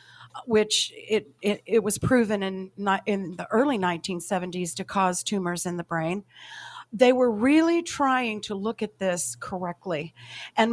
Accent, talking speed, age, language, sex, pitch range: American, 155 wpm, 50-69, English, female, 180-225 Hz